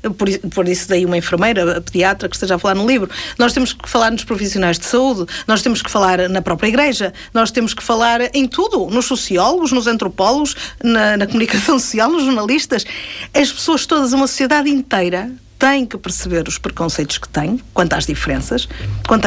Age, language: 50-69, Portuguese